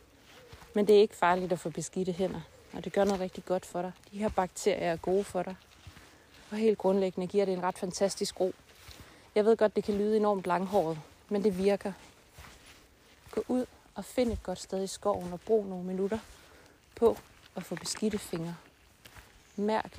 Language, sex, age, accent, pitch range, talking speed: Danish, female, 30-49, native, 155-205 Hz, 190 wpm